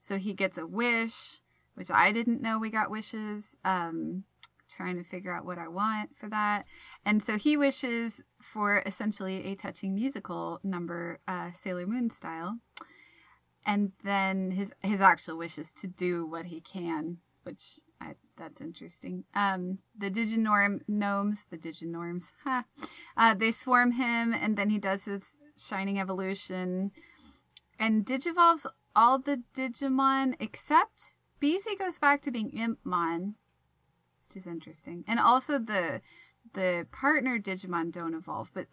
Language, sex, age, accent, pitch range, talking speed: English, female, 20-39, American, 185-230 Hz, 145 wpm